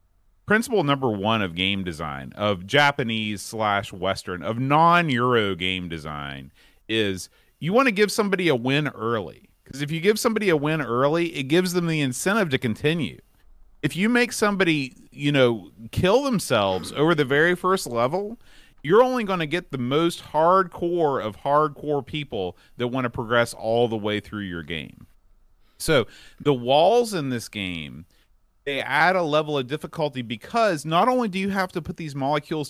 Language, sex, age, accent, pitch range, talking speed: English, male, 30-49, American, 110-170 Hz, 175 wpm